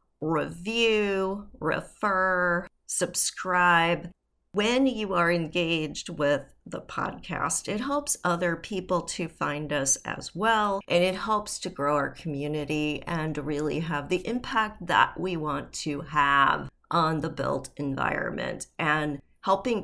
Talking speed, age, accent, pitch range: 125 wpm, 40-59, American, 160-210 Hz